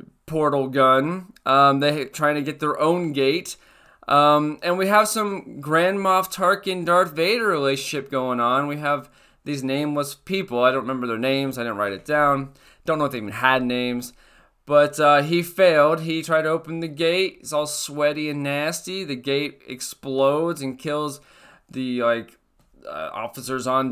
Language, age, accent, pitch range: English, 20-39, American, 120-150 Hz